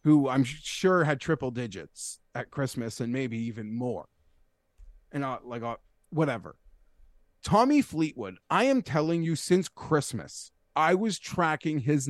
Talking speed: 145 wpm